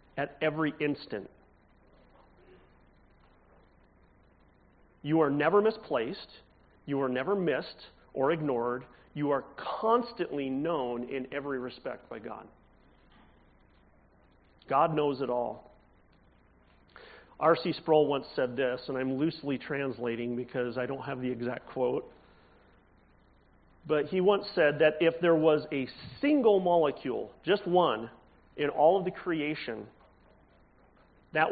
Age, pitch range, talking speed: 40-59, 115-155 Hz, 115 wpm